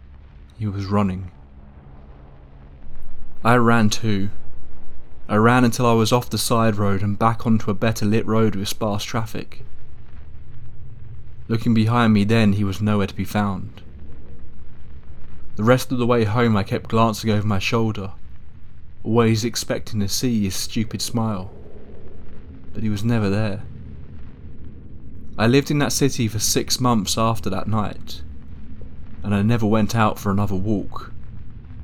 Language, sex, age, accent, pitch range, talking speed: English, male, 20-39, British, 95-110 Hz, 145 wpm